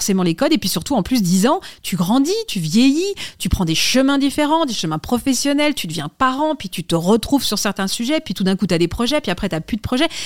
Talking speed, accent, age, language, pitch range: 270 wpm, French, 30-49, French, 185-250 Hz